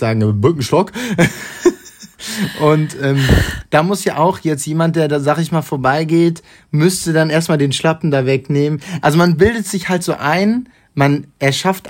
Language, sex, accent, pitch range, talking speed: German, male, German, 130-165 Hz, 160 wpm